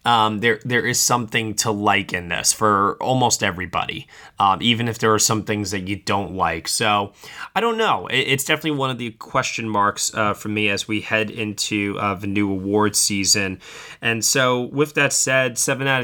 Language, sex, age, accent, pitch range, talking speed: English, male, 20-39, American, 95-115 Hz, 200 wpm